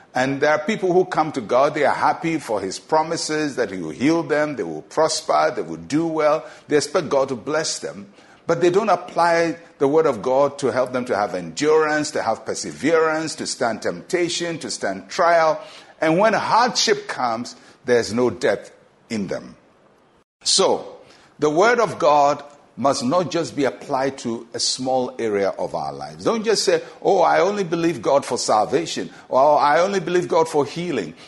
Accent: Nigerian